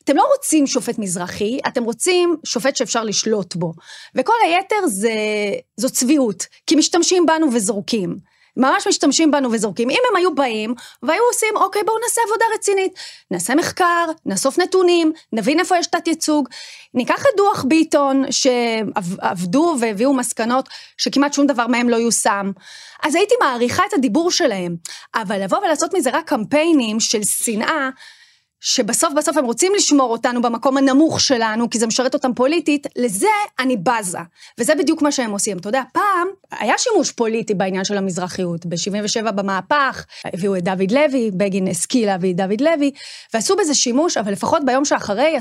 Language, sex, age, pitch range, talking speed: English, female, 30-49, 225-325 Hz, 140 wpm